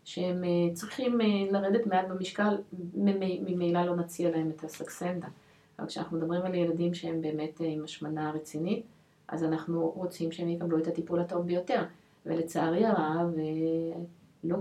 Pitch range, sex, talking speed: 160-190 Hz, female, 140 wpm